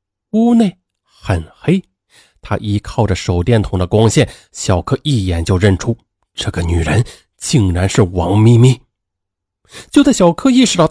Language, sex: Chinese, male